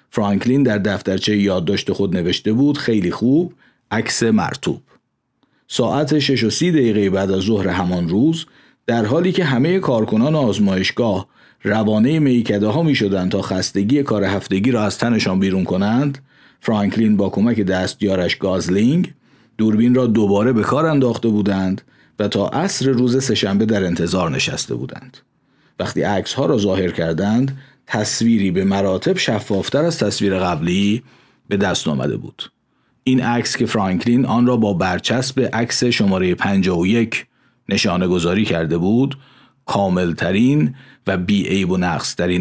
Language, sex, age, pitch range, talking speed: Persian, male, 50-69, 95-130 Hz, 140 wpm